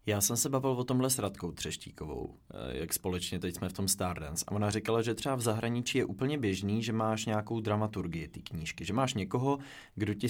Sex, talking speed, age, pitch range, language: male, 215 wpm, 20-39, 95-110 Hz, Czech